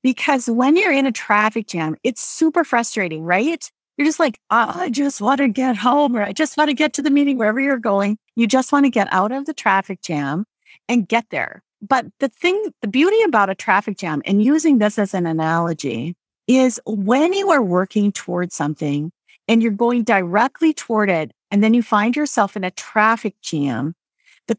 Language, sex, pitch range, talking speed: English, female, 195-280 Hz, 205 wpm